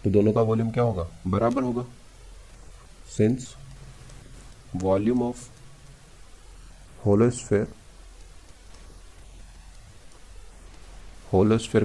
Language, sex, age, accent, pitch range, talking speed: Hindi, male, 30-49, native, 90-115 Hz, 65 wpm